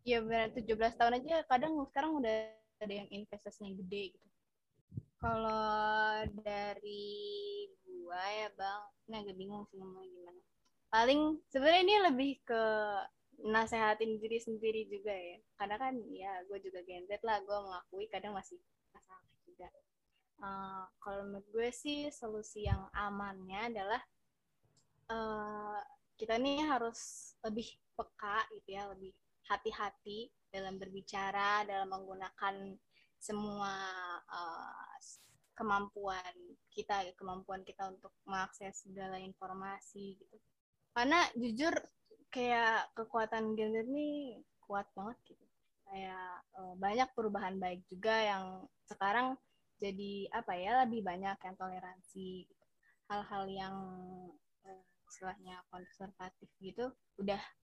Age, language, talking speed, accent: 20-39, Indonesian, 120 wpm, native